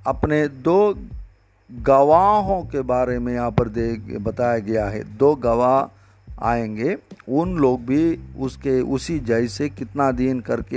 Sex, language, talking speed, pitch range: male, Hindi, 135 wpm, 115-140 Hz